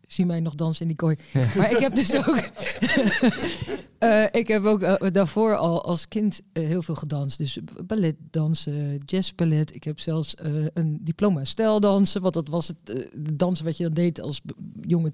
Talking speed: 190 wpm